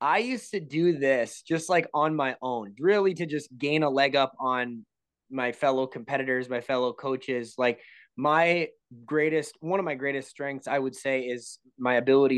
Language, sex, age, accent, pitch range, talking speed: English, male, 20-39, American, 130-165 Hz, 185 wpm